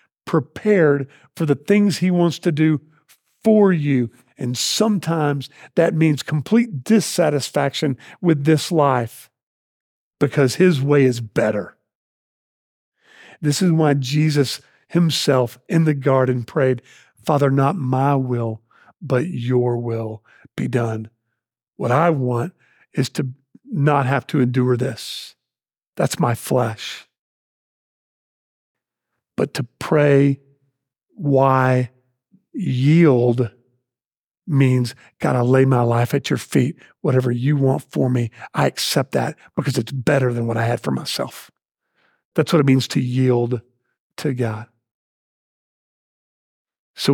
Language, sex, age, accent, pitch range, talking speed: English, male, 50-69, American, 125-155 Hz, 120 wpm